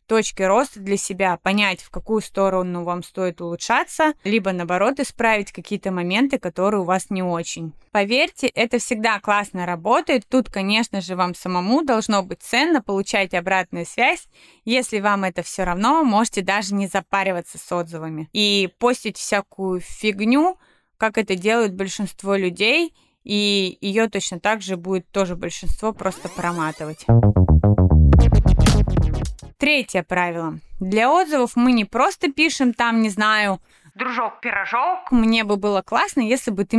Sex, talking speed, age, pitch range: female, 140 wpm, 20-39, 185-235 Hz